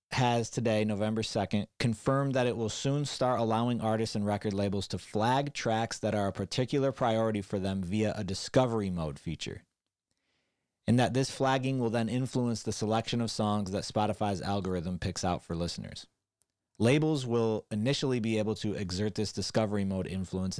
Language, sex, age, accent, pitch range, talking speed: English, male, 30-49, American, 95-115 Hz, 170 wpm